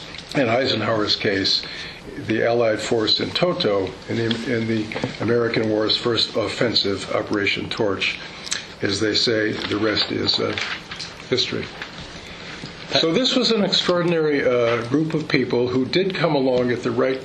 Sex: male